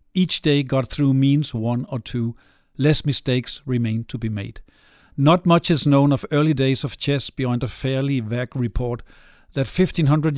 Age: 50-69